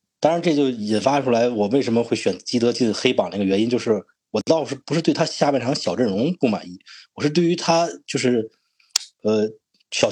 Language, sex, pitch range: Chinese, male, 110-155 Hz